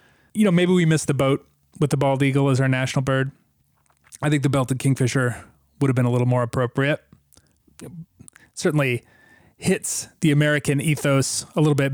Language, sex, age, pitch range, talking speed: English, male, 30-49, 130-165 Hz, 175 wpm